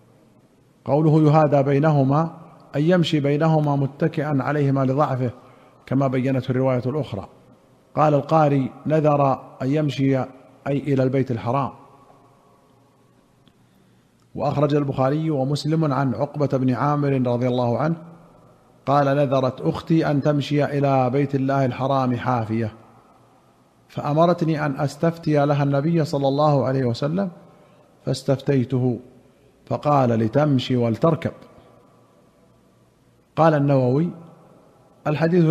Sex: male